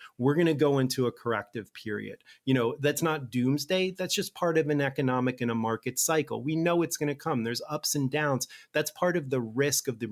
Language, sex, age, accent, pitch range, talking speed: English, male, 30-49, American, 135-165 Hz, 235 wpm